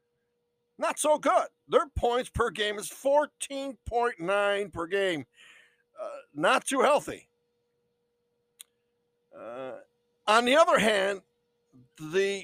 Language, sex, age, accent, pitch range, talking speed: English, male, 60-79, American, 180-290 Hz, 100 wpm